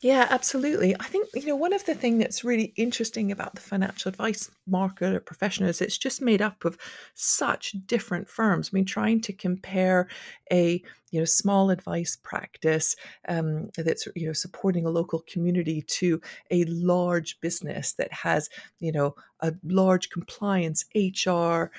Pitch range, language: 160-205 Hz, English